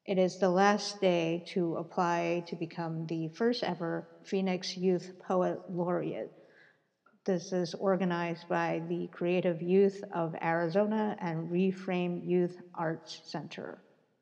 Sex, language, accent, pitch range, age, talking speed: female, English, American, 170-200 Hz, 50-69, 125 wpm